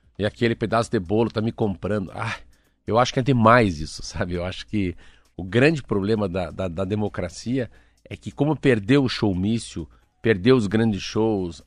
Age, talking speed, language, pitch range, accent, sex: 50-69, 185 wpm, Portuguese, 100-140 Hz, Brazilian, male